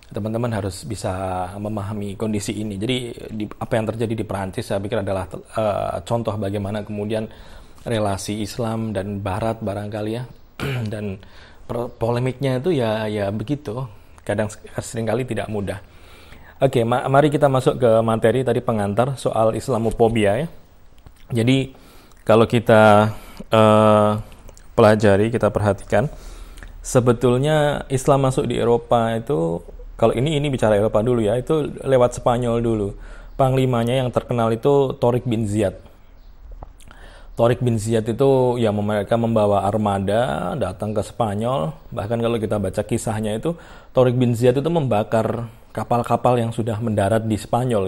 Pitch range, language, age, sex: 105-120 Hz, Indonesian, 20-39, male